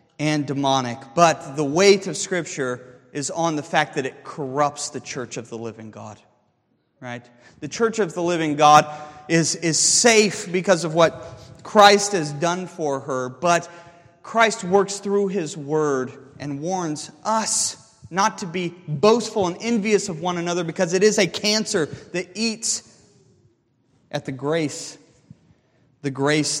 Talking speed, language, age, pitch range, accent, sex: 160 wpm, English, 30-49, 140-200 Hz, American, male